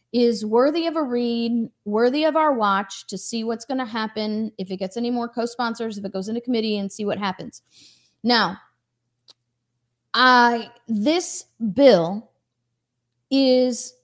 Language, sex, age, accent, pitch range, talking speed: English, female, 30-49, American, 200-270 Hz, 145 wpm